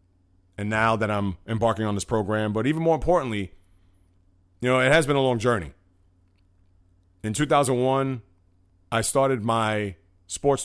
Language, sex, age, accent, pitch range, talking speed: English, male, 30-49, American, 90-125 Hz, 145 wpm